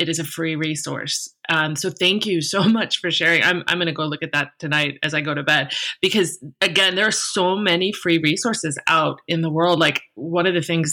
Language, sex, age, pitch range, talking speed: English, female, 30-49, 160-200 Hz, 235 wpm